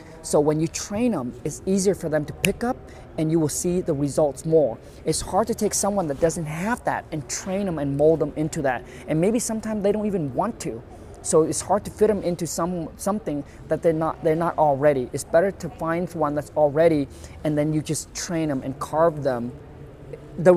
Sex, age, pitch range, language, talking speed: male, 20-39, 140-165 Hz, English, 220 wpm